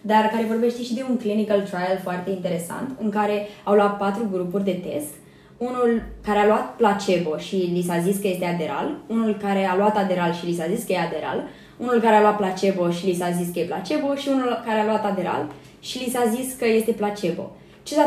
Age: 20-39